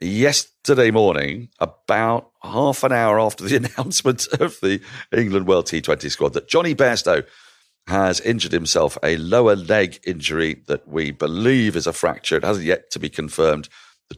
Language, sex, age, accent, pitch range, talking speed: English, male, 50-69, British, 85-130 Hz, 160 wpm